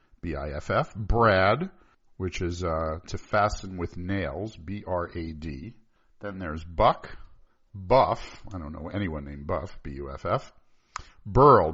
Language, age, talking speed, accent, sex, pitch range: English, 50-69, 110 wpm, American, male, 80-120 Hz